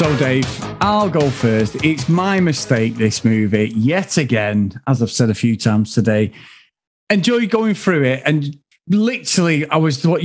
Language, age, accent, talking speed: English, 40-59, British, 165 wpm